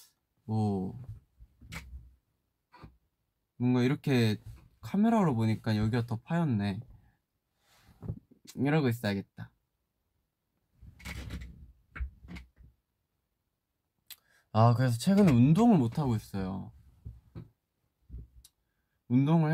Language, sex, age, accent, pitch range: Korean, male, 20-39, native, 105-135 Hz